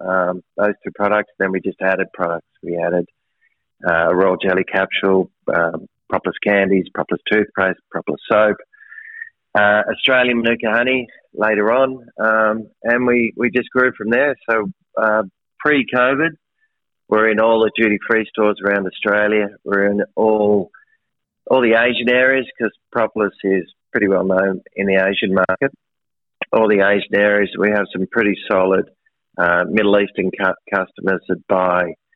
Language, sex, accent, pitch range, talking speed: English, male, Australian, 95-120 Hz, 150 wpm